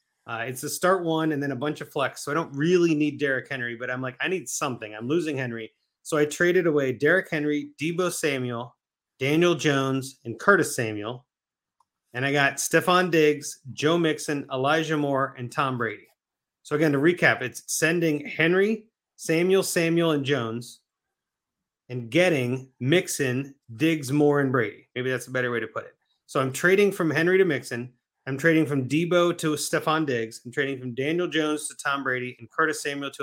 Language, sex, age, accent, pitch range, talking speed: English, male, 30-49, American, 135-170 Hz, 190 wpm